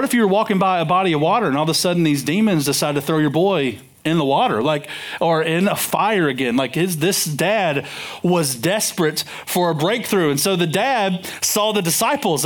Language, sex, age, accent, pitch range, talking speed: English, male, 40-59, American, 170-245 Hz, 225 wpm